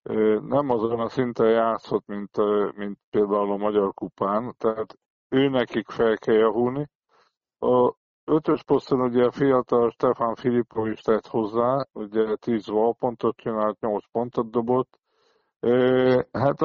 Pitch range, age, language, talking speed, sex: 105-125 Hz, 50-69, Hungarian, 130 wpm, male